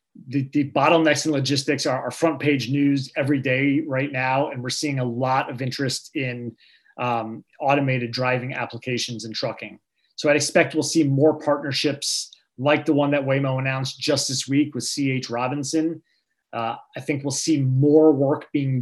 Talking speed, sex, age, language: 175 wpm, male, 30-49, English